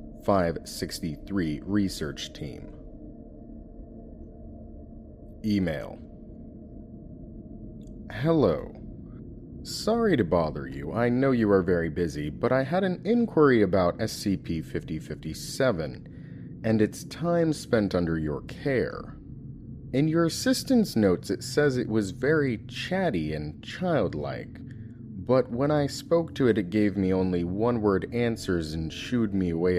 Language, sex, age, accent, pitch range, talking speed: English, male, 30-49, American, 95-150 Hz, 115 wpm